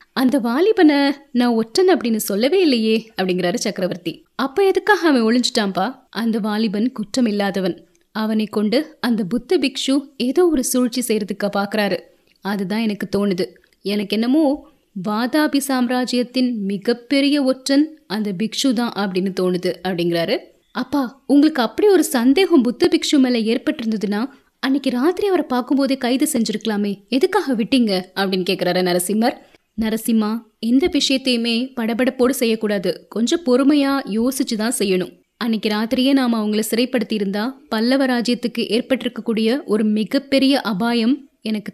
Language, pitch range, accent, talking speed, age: Tamil, 215-275 Hz, native, 115 wpm, 20-39